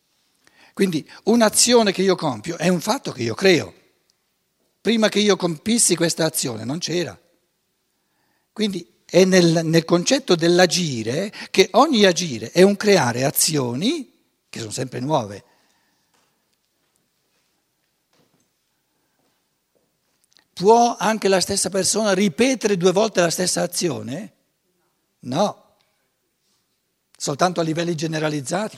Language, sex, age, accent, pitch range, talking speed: Italian, male, 60-79, native, 145-205 Hz, 110 wpm